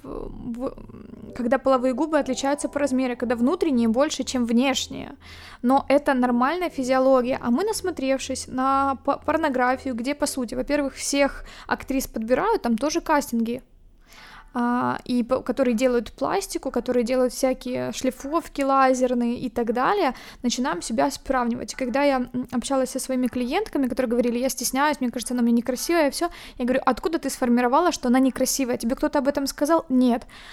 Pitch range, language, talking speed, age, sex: 245-290 Hz, Ukrainian, 155 wpm, 20-39, female